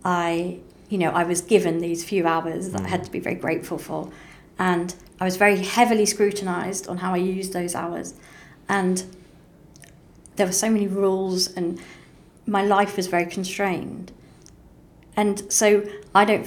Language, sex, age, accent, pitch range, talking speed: English, female, 40-59, British, 180-210 Hz, 165 wpm